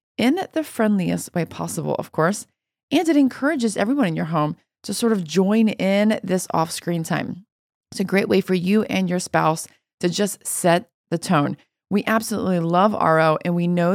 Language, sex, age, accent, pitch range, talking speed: English, female, 30-49, American, 180-235 Hz, 185 wpm